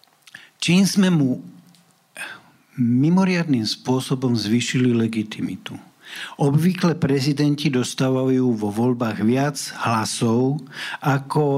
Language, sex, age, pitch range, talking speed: Slovak, male, 60-79, 120-150 Hz, 80 wpm